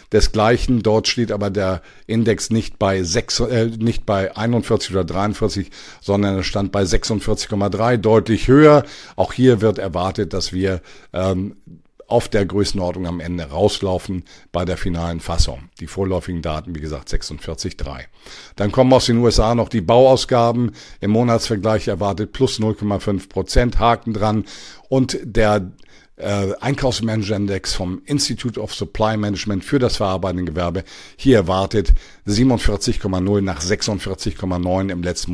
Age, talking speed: 50-69, 135 wpm